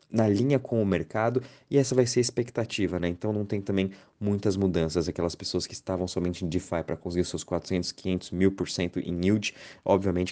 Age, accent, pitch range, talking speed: 20-39, Brazilian, 90-110 Hz, 190 wpm